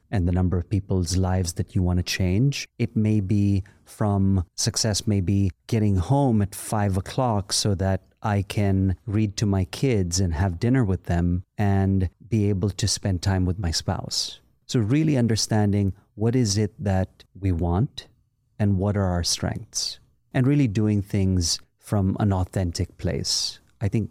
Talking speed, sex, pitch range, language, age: 165 wpm, male, 95-110 Hz, English, 30-49